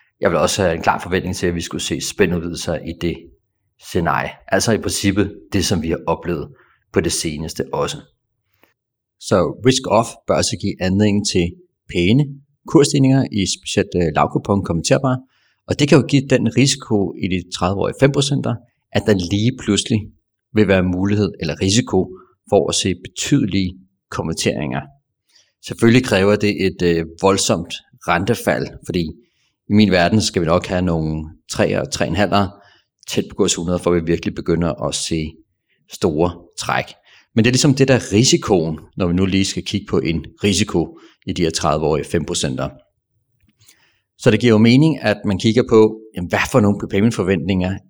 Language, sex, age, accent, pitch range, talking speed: Danish, male, 40-59, native, 90-110 Hz, 165 wpm